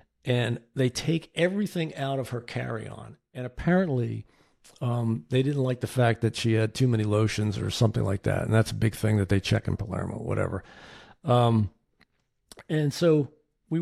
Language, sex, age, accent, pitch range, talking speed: English, male, 50-69, American, 115-150 Hz, 180 wpm